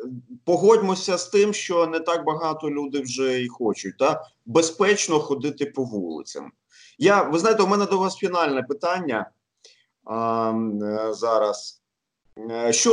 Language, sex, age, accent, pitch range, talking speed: Ukrainian, male, 30-49, native, 125-175 Hz, 130 wpm